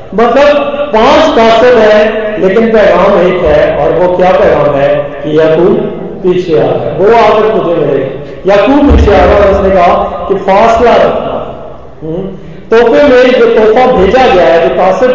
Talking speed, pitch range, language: 165 wpm, 175-250 Hz, Hindi